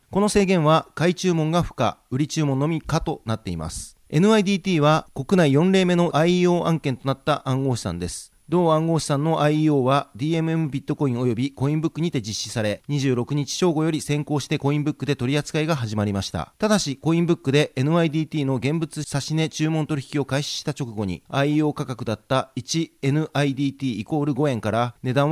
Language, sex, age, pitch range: Japanese, male, 40-59, 130-160 Hz